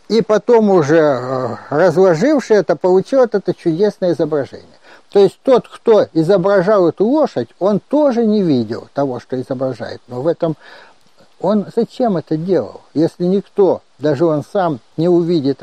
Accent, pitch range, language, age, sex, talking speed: native, 145-200 Hz, Russian, 60-79, male, 145 wpm